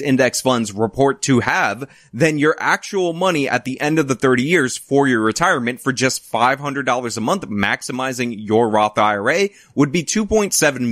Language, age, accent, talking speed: English, 20-39, American, 170 wpm